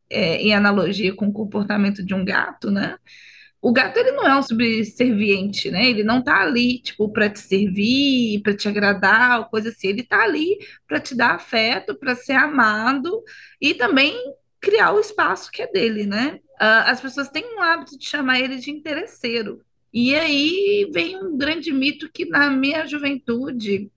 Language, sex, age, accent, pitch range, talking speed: Portuguese, female, 20-39, Brazilian, 215-280 Hz, 180 wpm